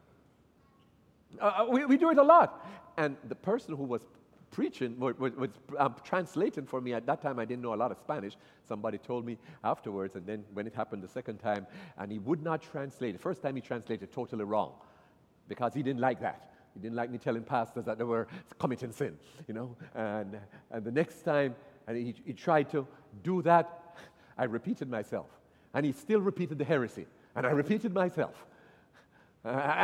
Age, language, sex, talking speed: 40-59, English, male, 195 wpm